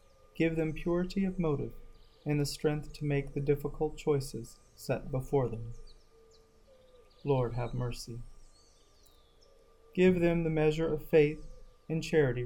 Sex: male